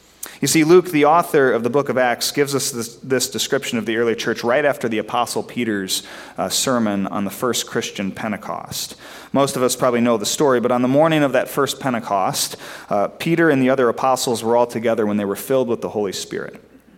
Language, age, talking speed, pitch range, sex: English, 30-49, 225 wpm, 115-145 Hz, male